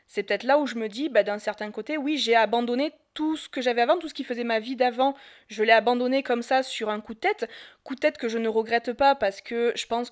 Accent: French